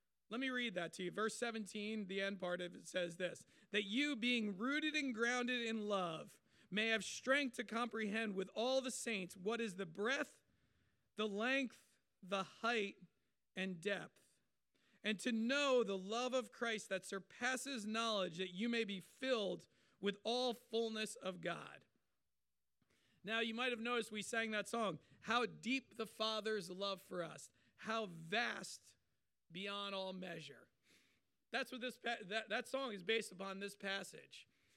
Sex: male